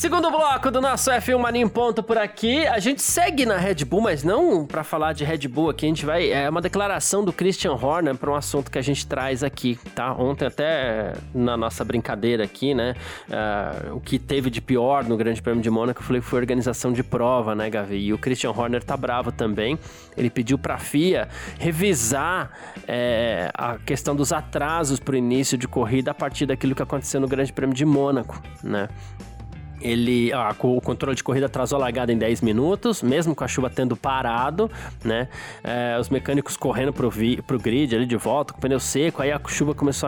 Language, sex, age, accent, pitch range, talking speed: Portuguese, male, 20-39, Brazilian, 120-150 Hz, 210 wpm